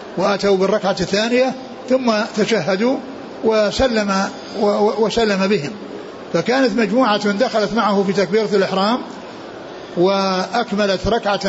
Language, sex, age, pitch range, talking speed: Arabic, male, 60-79, 195-230 Hz, 90 wpm